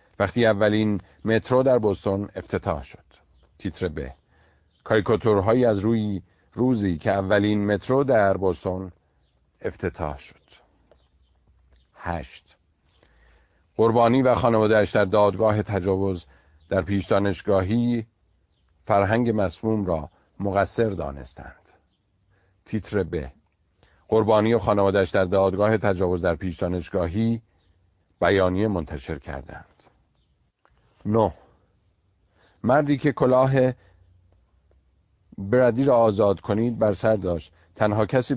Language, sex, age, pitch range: Persian, male, 50-69, 85-110 Hz